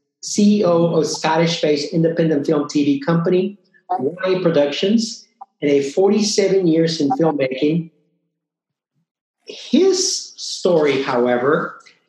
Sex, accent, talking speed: male, American, 90 wpm